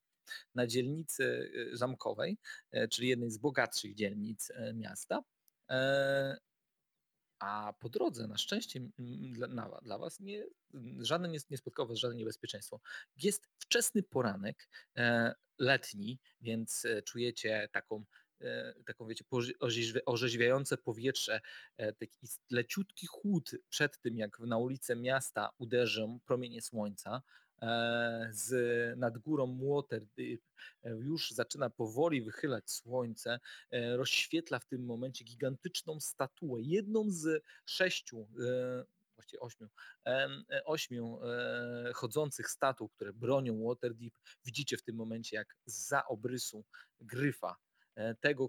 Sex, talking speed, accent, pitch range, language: male, 100 wpm, native, 115-135 Hz, Polish